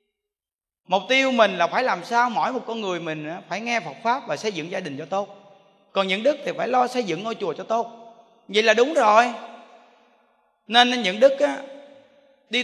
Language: Vietnamese